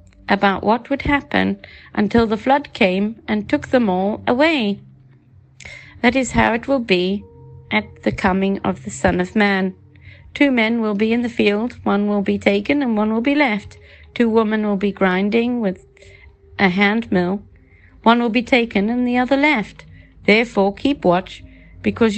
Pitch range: 190-245 Hz